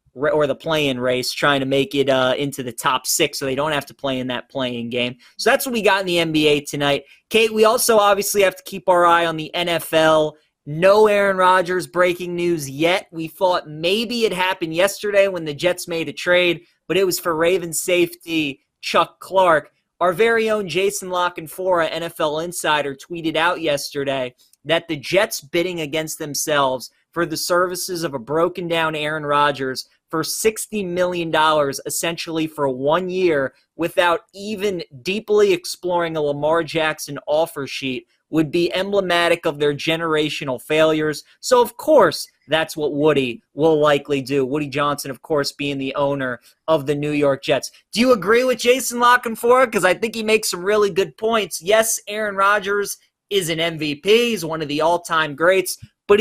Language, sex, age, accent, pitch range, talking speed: English, male, 20-39, American, 150-190 Hz, 175 wpm